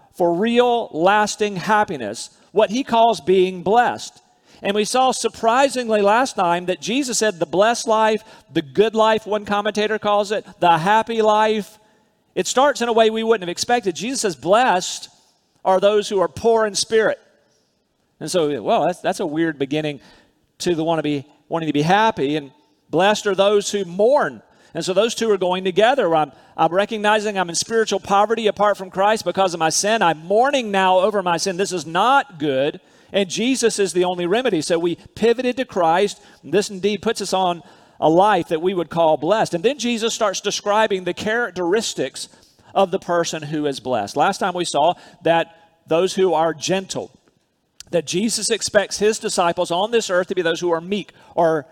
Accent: American